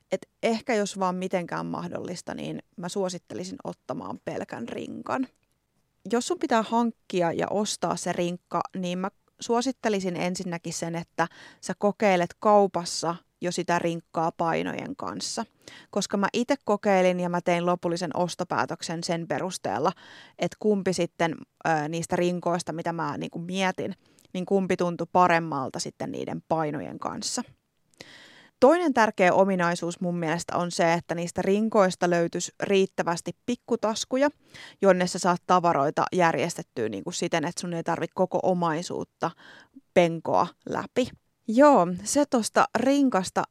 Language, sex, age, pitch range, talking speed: English, female, 20-39, 170-205 Hz, 130 wpm